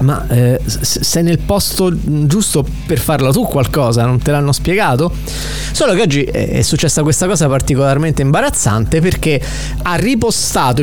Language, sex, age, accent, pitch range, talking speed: Italian, male, 30-49, native, 130-170 Hz, 145 wpm